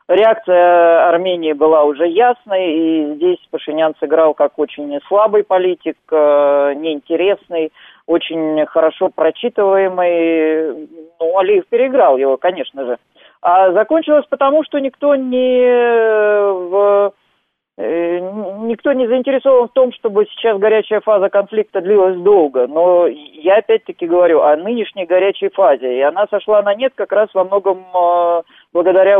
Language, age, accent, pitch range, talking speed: Russian, 40-59, native, 165-225 Hz, 125 wpm